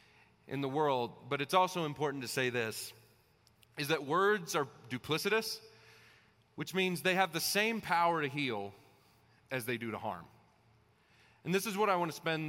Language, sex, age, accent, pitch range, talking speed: English, male, 30-49, American, 125-190 Hz, 180 wpm